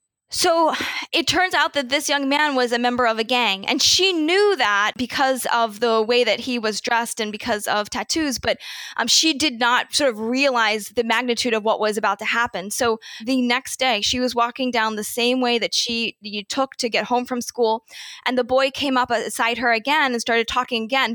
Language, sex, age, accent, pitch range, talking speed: English, female, 10-29, American, 225-265 Hz, 220 wpm